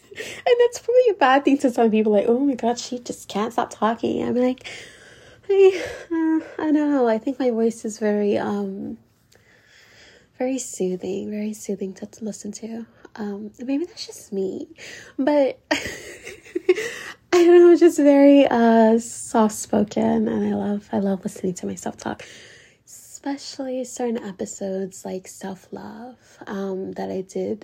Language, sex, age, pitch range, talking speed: English, female, 20-39, 210-285 Hz, 150 wpm